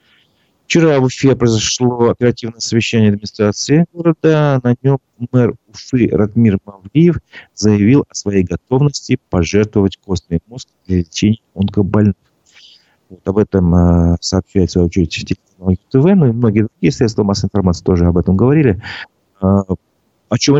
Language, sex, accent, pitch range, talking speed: Russian, male, native, 95-120 Hz, 125 wpm